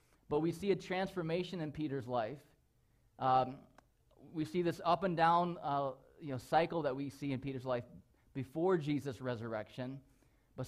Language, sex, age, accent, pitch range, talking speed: English, male, 20-39, American, 125-155 Hz, 165 wpm